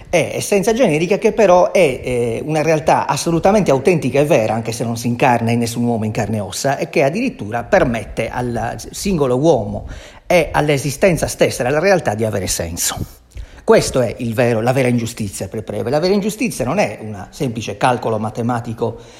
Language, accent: Italian, native